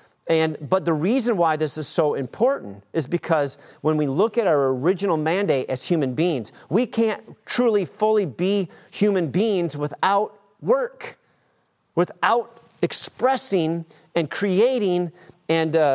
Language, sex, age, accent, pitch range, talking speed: English, male, 40-59, American, 145-195 Hz, 130 wpm